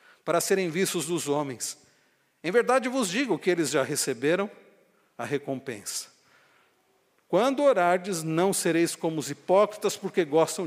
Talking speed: 135 wpm